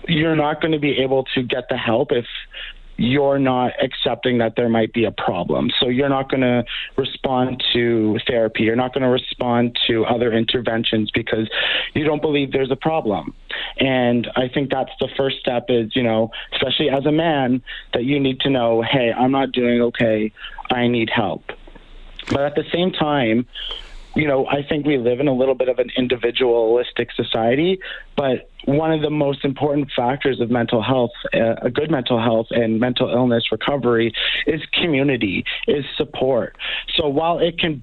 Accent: American